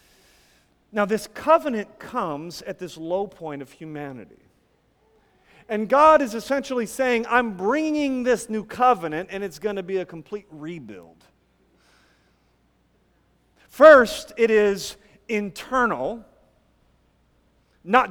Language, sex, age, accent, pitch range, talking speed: English, male, 40-59, American, 190-270 Hz, 110 wpm